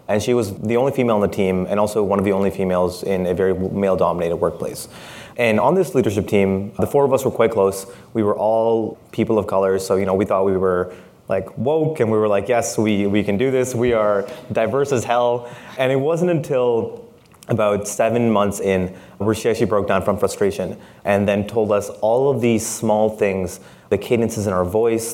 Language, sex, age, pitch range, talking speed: English, male, 20-39, 95-115 Hz, 220 wpm